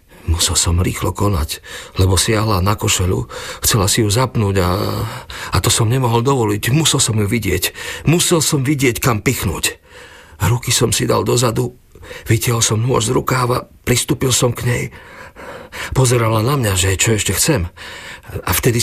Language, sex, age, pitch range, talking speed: Slovak, male, 50-69, 95-120 Hz, 160 wpm